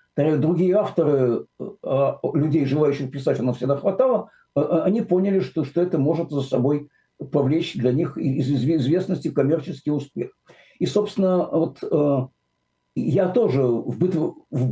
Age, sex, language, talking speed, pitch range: 60-79, male, Russian, 125 wpm, 140-180 Hz